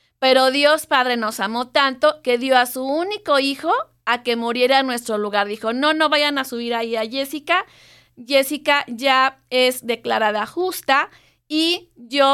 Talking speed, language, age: 165 wpm, Spanish, 30-49